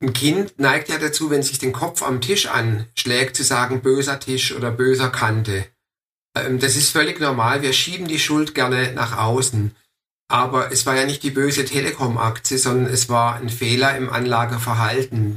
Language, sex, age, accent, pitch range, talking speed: German, male, 50-69, German, 115-135 Hz, 175 wpm